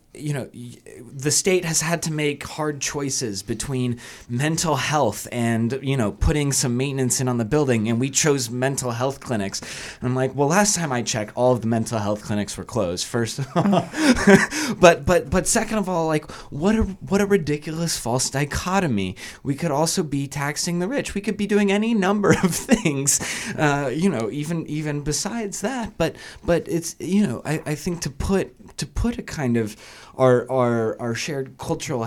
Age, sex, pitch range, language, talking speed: 20-39, male, 115-160 Hz, English, 195 wpm